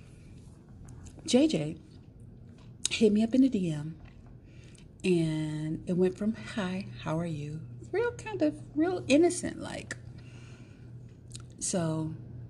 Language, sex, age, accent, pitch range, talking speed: English, female, 40-59, American, 120-185 Hz, 105 wpm